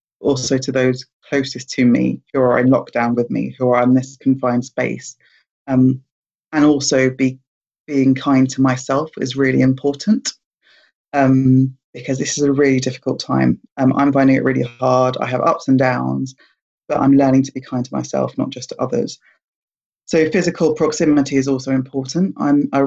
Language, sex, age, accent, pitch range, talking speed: English, female, 20-39, British, 130-140 Hz, 180 wpm